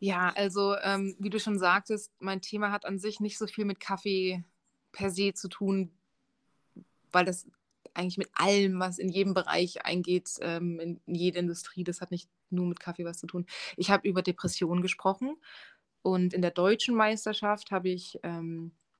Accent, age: German, 20-39